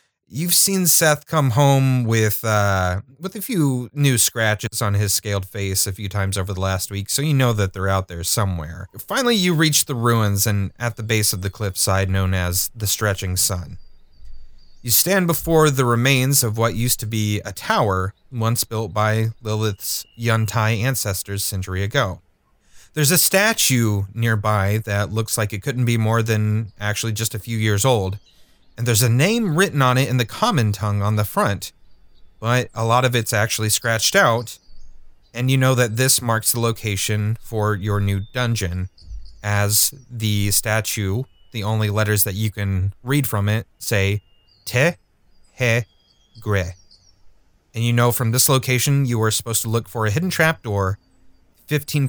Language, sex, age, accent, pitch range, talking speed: English, male, 30-49, American, 100-125 Hz, 175 wpm